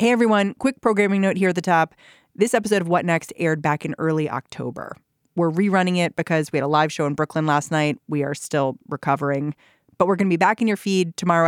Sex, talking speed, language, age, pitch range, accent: female, 240 wpm, English, 30-49, 150-190 Hz, American